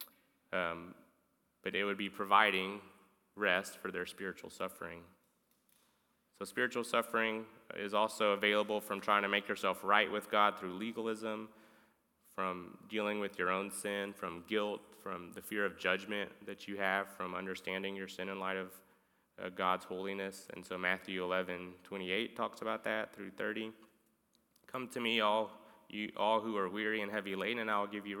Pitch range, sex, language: 90-105 Hz, male, English